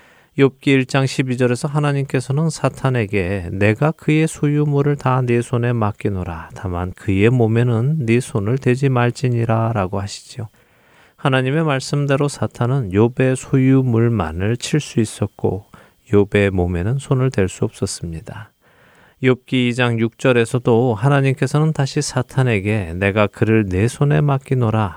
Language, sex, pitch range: Korean, male, 105-135 Hz